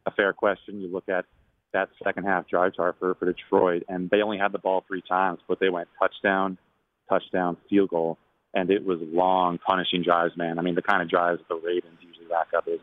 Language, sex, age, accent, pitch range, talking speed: English, male, 30-49, American, 90-100 Hz, 220 wpm